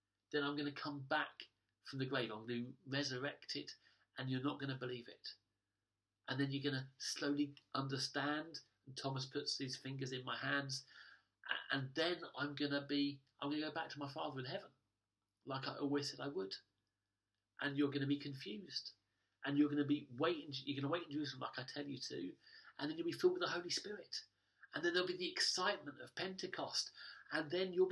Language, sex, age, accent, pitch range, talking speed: English, male, 40-59, British, 110-155 Hz, 215 wpm